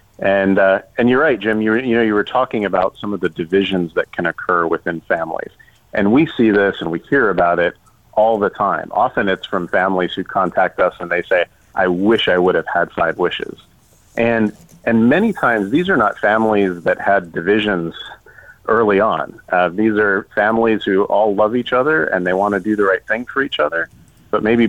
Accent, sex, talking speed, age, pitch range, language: American, male, 215 wpm, 40-59, 90-110 Hz, English